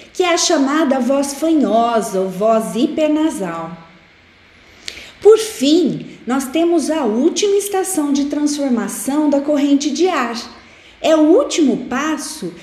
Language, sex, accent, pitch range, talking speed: Portuguese, female, Brazilian, 215-330 Hz, 125 wpm